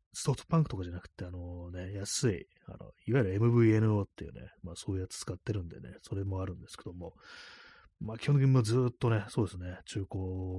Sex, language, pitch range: male, Japanese, 90-120 Hz